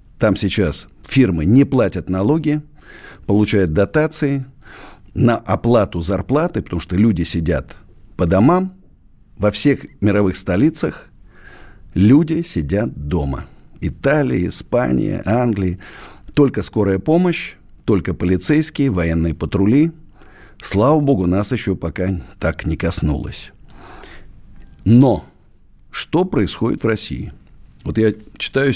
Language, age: Russian, 50-69